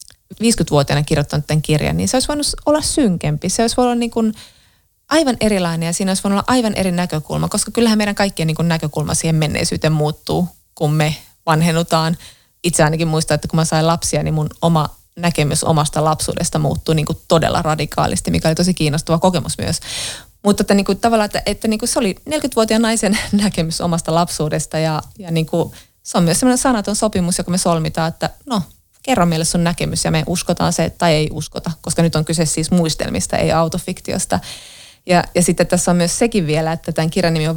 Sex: female